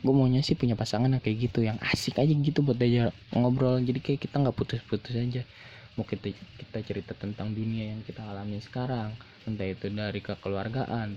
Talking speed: 185 wpm